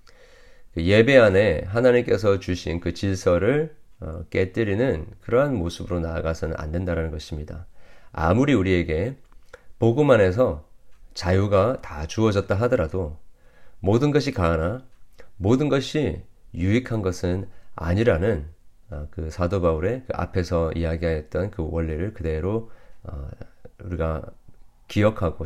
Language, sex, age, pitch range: Korean, male, 40-59, 80-110 Hz